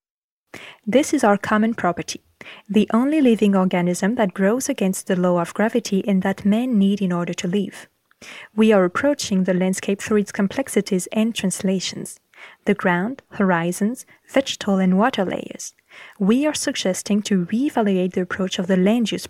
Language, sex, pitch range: French, female, 190-235 Hz